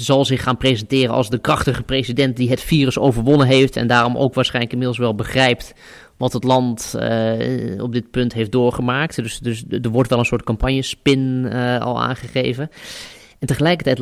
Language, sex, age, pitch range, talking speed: Dutch, male, 20-39, 115-130 Hz, 180 wpm